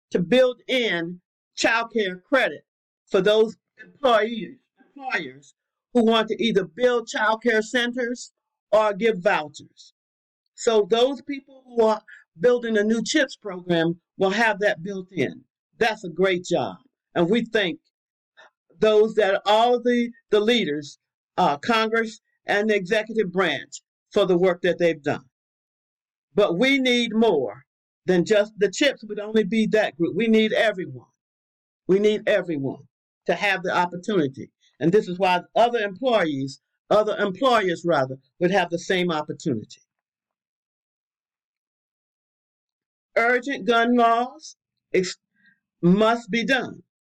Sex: male